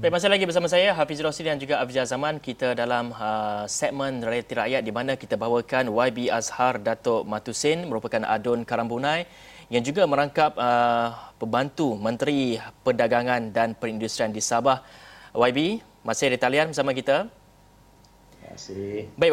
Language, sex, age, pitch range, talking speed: Malay, male, 30-49, 120-145 Hz, 145 wpm